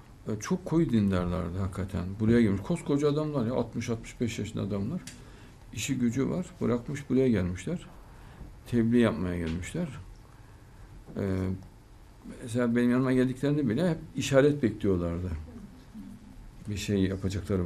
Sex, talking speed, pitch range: male, 110 wpm, 100-130 Hz